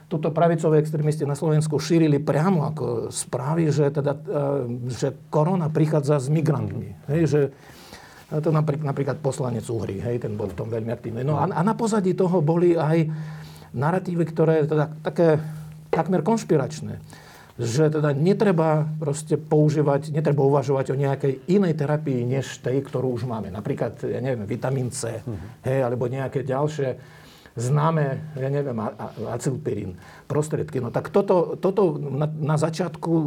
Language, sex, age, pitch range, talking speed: Slovak, male, 50-69, 135-165 Hz, 140 wpm